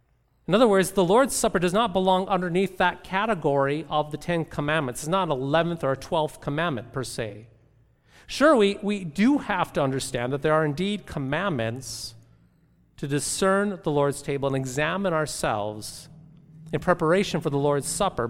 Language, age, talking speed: English, 40-59, 165 wpm